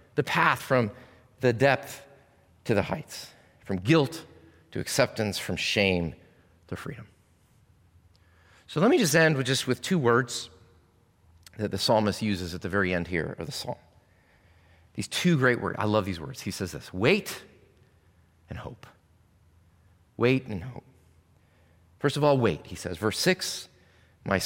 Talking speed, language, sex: 155 wpm, English, male